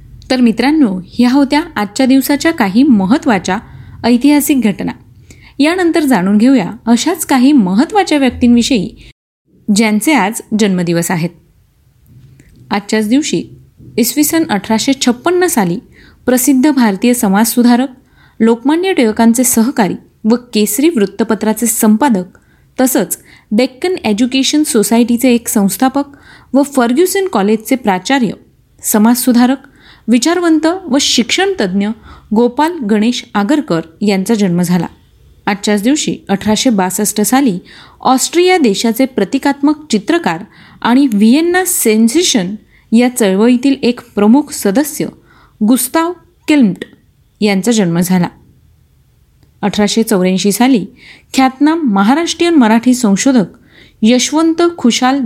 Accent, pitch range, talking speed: native, 210-275 Hz, 95 wpm